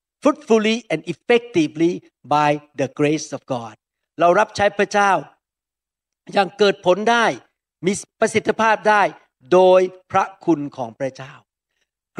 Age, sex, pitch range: 60-79, male, 155-205 Hz